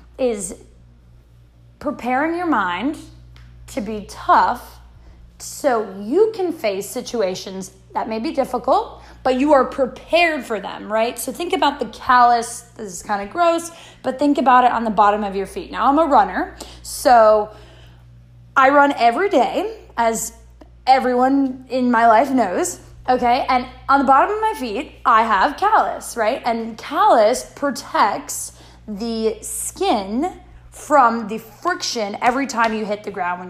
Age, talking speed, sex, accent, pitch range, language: 20-39, 150 wpm, female, American, 215-295 Hz, English